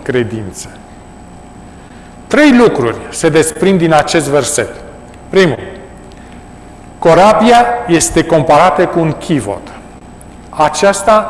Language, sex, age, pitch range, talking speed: Romanian, male, 40-59, 130-190 Hz, 85 wpm